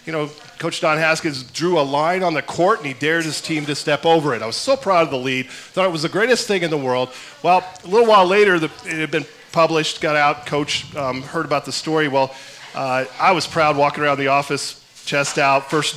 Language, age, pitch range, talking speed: English, 40-59, 135-165 Hz, 245 wpm